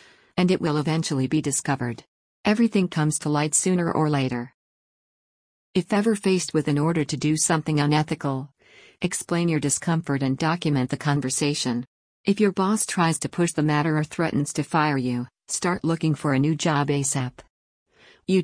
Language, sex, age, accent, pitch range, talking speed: English, female, 50-69, American, 140-170 Hz, 165 wpm